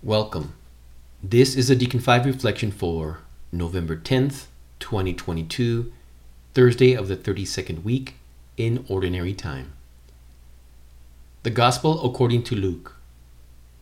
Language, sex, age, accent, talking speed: English, male, 40-59, American, 105 wpm